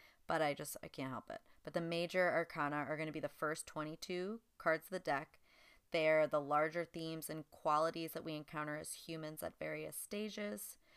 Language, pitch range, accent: English, 160-185 Hz, American